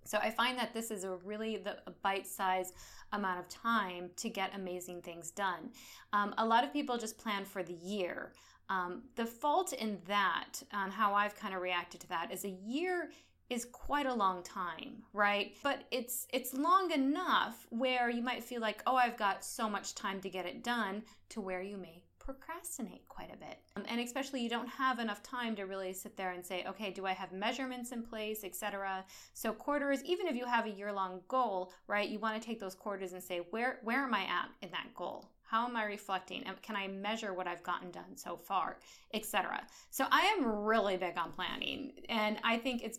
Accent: American